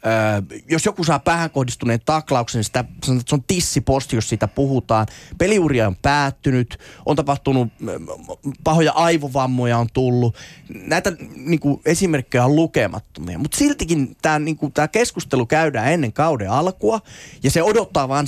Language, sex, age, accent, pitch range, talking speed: Finnish, male, 20-39, native, 115-155 Hz, 130 wpm